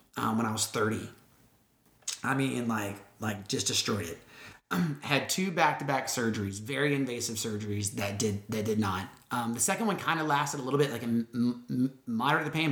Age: 30-49